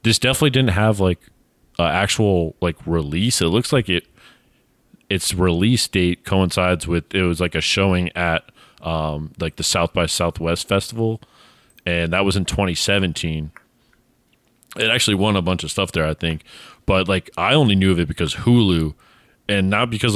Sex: male